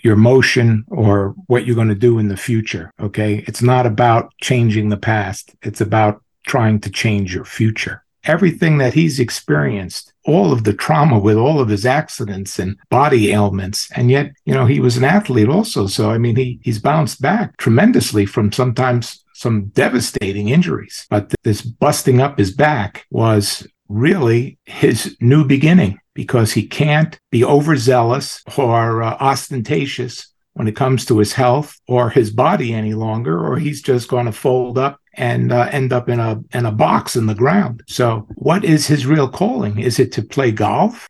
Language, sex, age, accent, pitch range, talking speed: English, male, 50-69, American, 110-145 Hz, 180 wpm